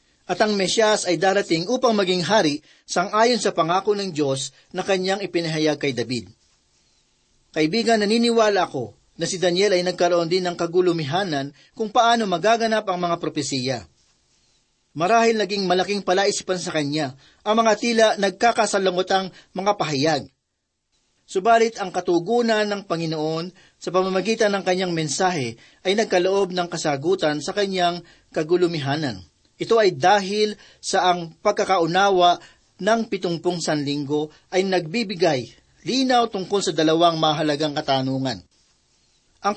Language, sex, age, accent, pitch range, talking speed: Filipino, male, 40-59, native, 160-205 Hz, 125 wpm